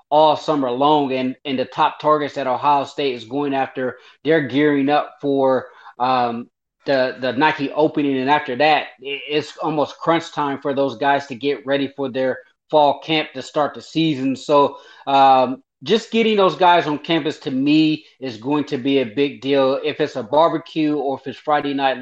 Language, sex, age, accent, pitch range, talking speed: English, male, 20-39, American, 135-150 Hz, 190 wpm